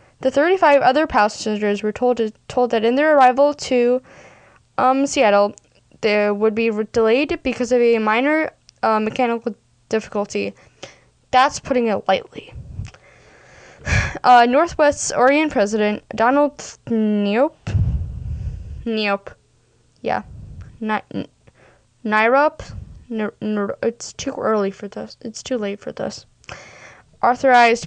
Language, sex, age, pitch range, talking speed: English, female, 10-29, 215-265 Hz, 120 wpm